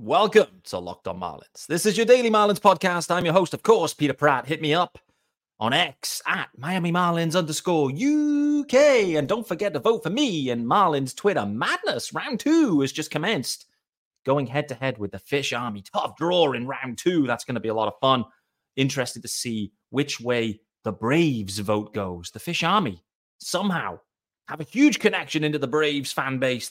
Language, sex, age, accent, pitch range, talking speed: English, male, 30-49, British, 115-175 Hz, 195 wpm